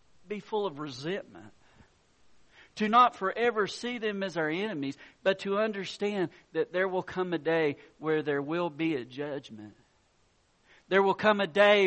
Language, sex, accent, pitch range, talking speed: English, male, American, 150-230 Hz, 160 wpm